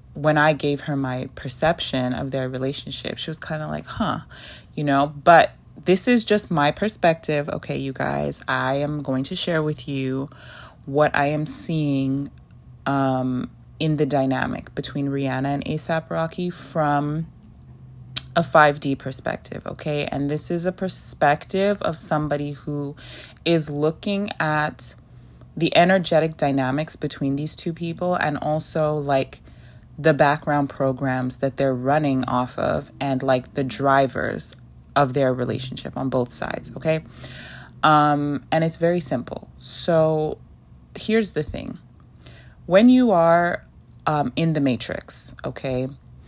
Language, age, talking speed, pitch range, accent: English, 20-39, 140 wpm, 130-160 Hz, American